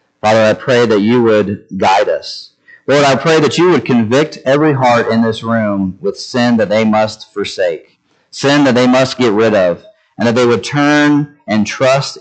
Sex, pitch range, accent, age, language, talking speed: male, 100-135 Hz, American, 40-59, English, 195 wpm